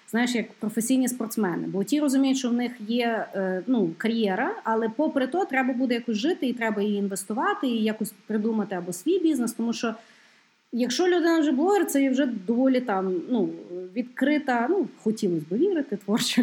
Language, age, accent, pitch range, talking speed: Ukrainian, 30-49, native, 200-270 Hz, 170 wpm